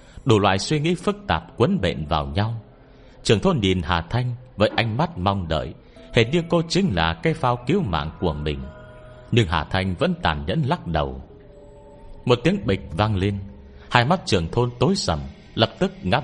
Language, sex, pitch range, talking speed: Vietnamese, male, 90-130 Hz, 195 wpm